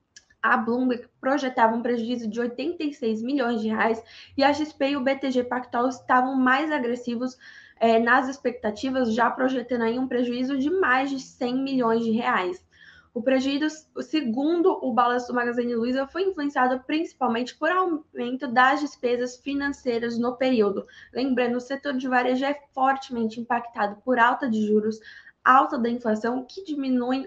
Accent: Brazilian